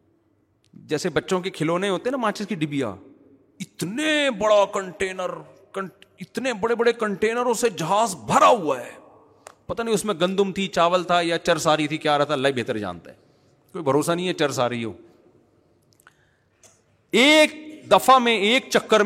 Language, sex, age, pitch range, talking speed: Urdu, male, 40-59, 150-200 Hz, 155 wpm